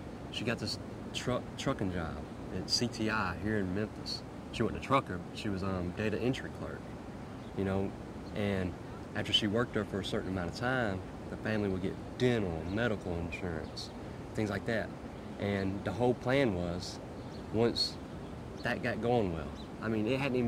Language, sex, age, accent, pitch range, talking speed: English, male, 30-49, American, 90-110 Hz, 180 wpm